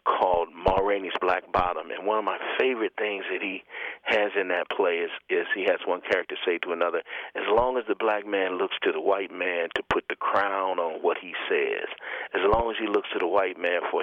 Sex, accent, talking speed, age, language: male, American, 235 wpm, 40-59, English